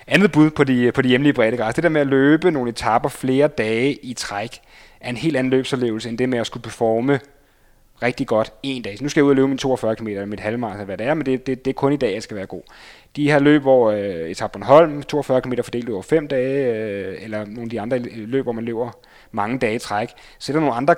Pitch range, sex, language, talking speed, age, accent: 110-135 Hz, male, Danish, 265 wpm, 30-49, native